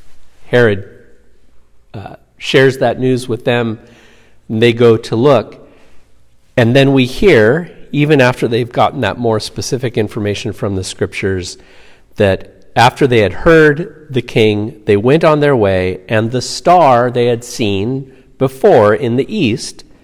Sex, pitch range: male, 95-130 Hz